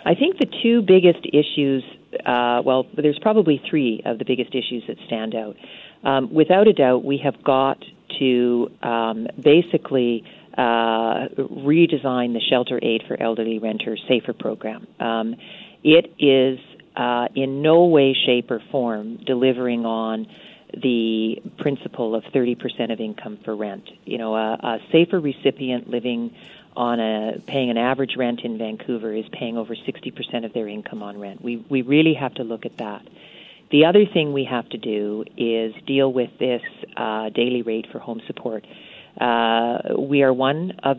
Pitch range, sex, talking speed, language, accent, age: 115-140 Hz, female, 165 wpm, English, American, 40-59